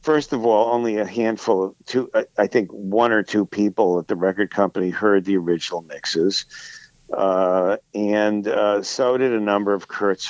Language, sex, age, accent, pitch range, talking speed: English, male, 50-69, American, 105-130 Hz, 180 wpm